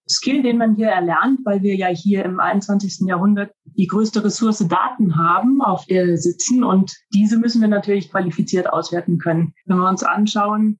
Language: German